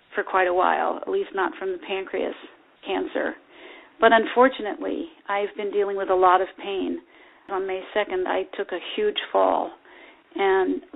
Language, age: English, 40-59